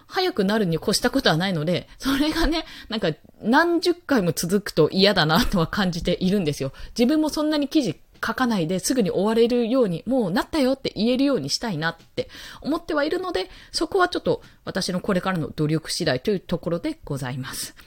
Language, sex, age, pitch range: Japanese, female, 20-39, 160-250 Hz